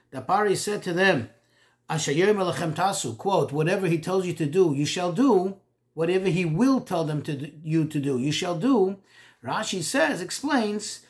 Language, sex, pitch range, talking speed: English, male, 150-205 Hz, 175 wpm